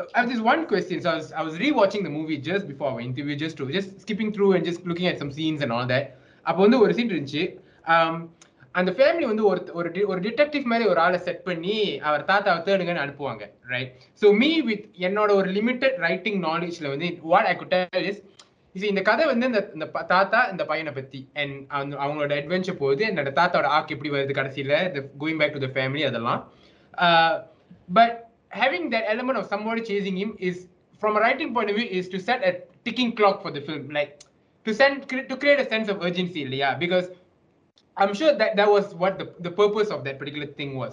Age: 20-39